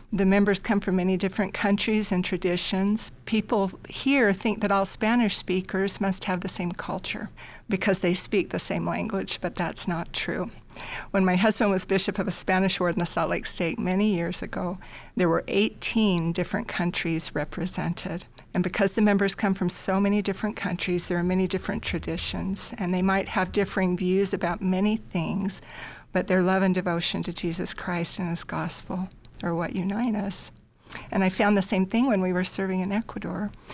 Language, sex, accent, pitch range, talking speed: English, female, American, 180-200 Hz, 185 wpm